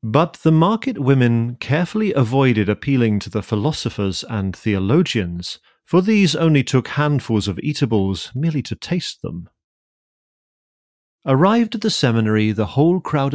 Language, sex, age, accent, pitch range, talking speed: English, male, 40-59, British, 105-145 Hz, 135 wpm